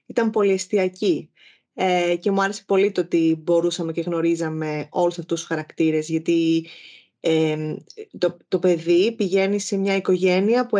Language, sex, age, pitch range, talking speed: Greek, female, 20-39, 170-215 Hz, 135 wpm